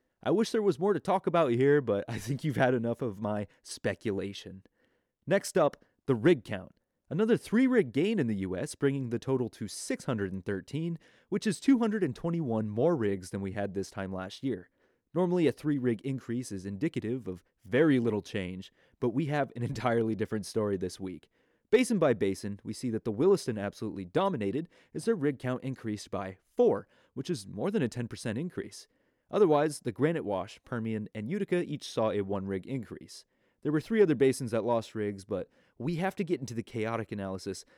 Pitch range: 105-160 Hz